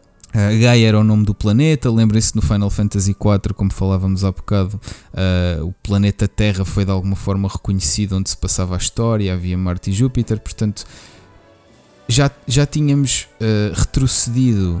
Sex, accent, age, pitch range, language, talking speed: male, Portuguese, 20-39, 100-120 Hz, Portuguese, 160 wpm